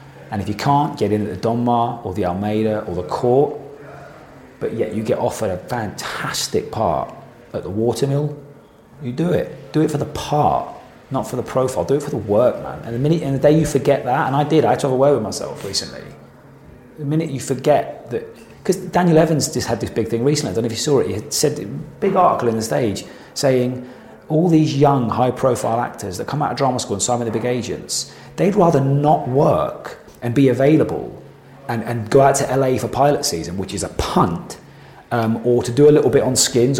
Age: 30-49